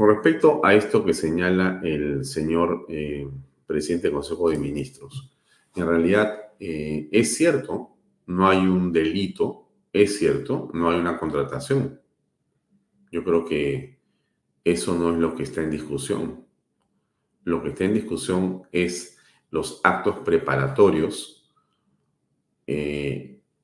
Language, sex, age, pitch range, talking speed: Spanish, male, 40-59, 80-95 Hz, 125 wpm